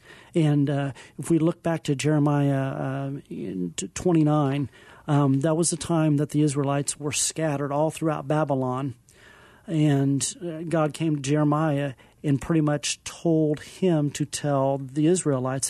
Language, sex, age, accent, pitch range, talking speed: English, male, 40-59, American, 140-165 Hz, 145 wpm